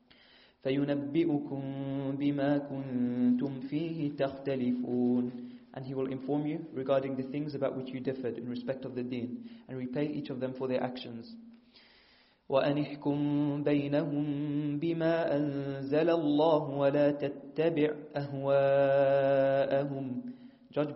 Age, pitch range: 30-49, 130-145 Hz